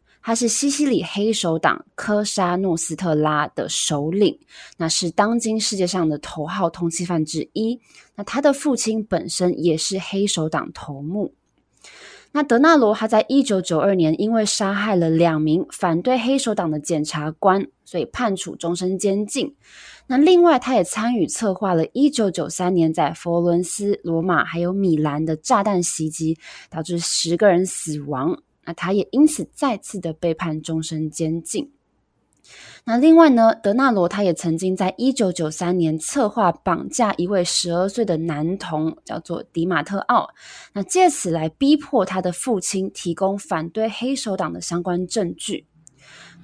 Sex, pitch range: female, 165-220 Hz